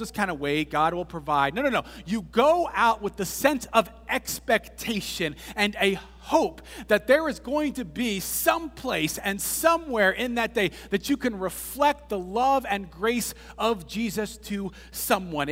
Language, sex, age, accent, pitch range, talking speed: English, male, 40-59, American, 150-230 Hz, 175 wpm